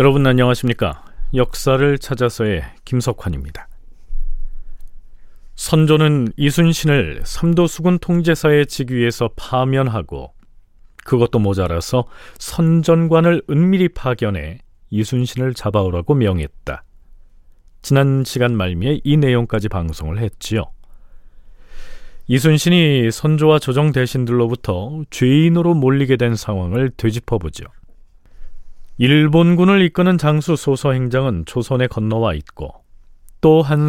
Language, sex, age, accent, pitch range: Korean, male, 40-59, native, 100-145 Hz